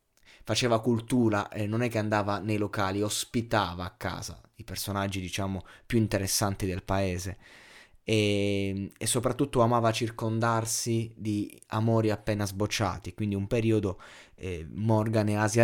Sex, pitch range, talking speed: male, 95-110 Hz, 135 wpm